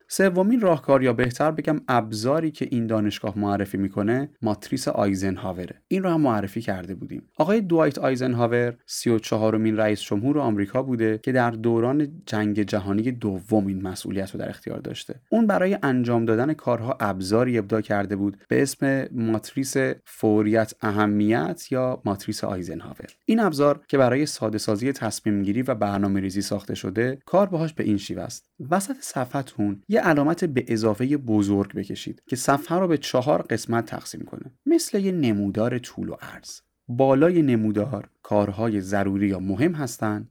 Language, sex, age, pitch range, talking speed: Persian, male, 30-49, 105-140 Hz, 150 wpm